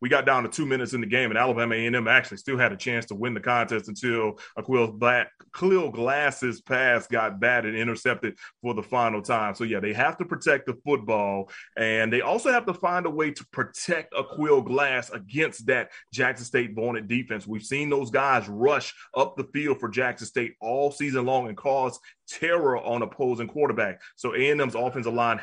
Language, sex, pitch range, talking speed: English, male, 115-140 Hz, 205 wpm